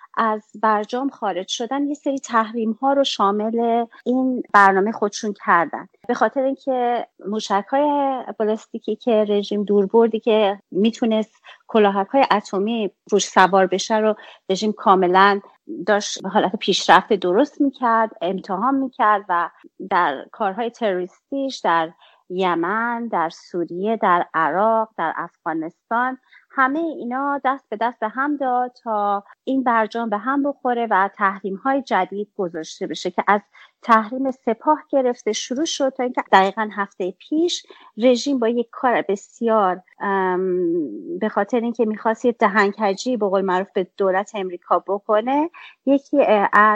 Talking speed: 130 wpm